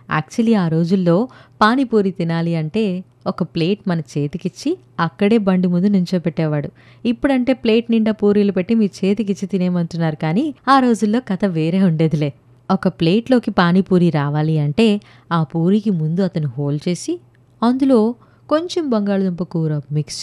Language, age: Telugu, 20-39